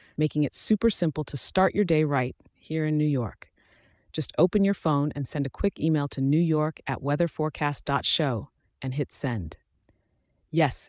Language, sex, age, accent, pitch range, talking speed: English, female, 30-49, American, 135-170 Hz, 155 wpm